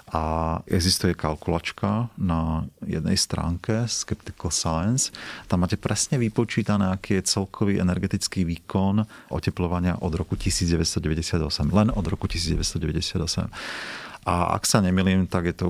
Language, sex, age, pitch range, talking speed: Slovak, male, 40-59, 80-95 Hz, 120 wpm